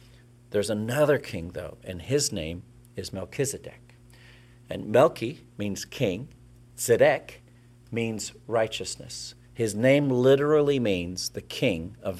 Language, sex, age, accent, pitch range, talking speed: English, male, 50-69, American, 105-125 Hz, 115 wpm